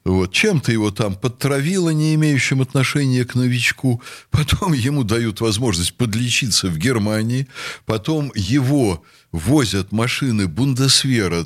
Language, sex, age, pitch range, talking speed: Russian, male, 60-79, 95-145 Hz, 115 wpm